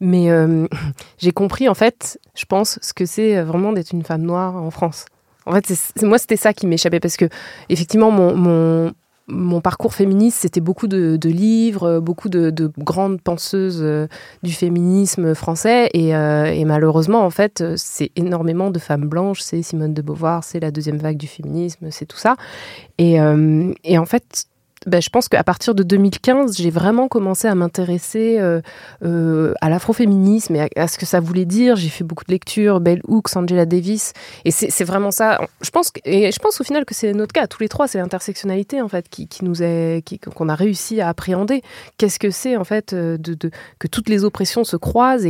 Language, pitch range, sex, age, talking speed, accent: French, 165-205 Hz, female, 20-39, 210 wpm, French